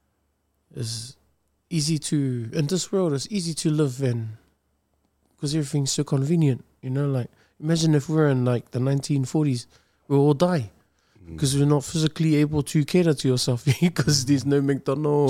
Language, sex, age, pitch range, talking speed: English, male, 20-39, 115-150 Hz, 165 wpm